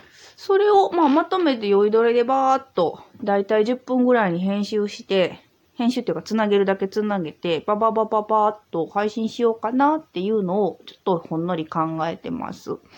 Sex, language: female, Japanese